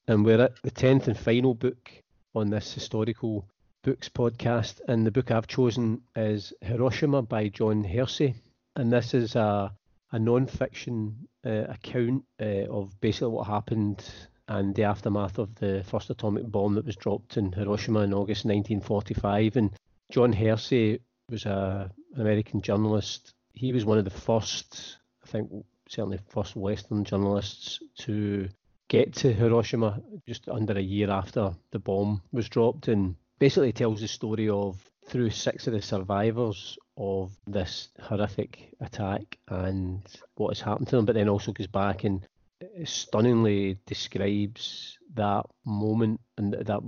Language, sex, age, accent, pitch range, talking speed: English, male, 40-59, British, 100-120 Hz, 150 wpm